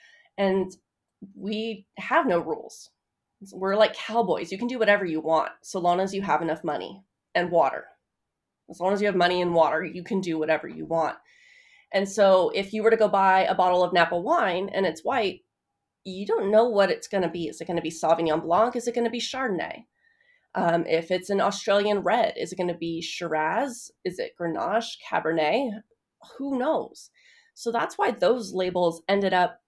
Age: 30-49